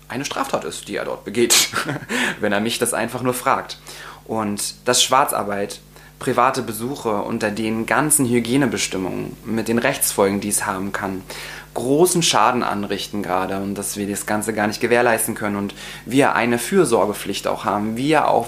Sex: male